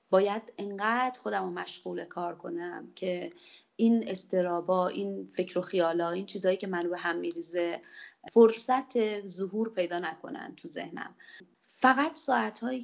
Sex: female